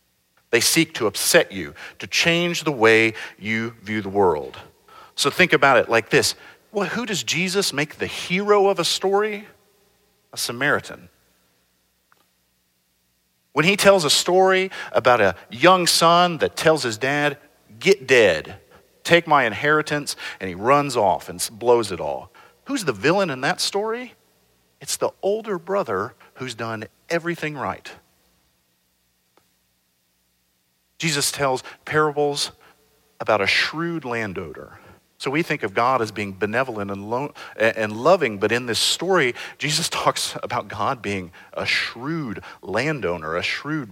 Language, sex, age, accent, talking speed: English, male, 50-69, American, 140 wpm